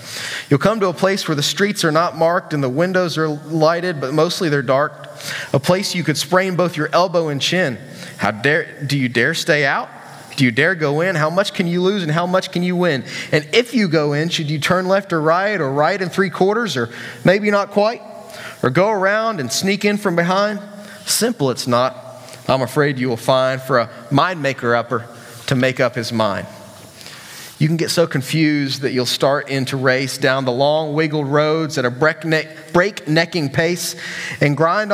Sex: male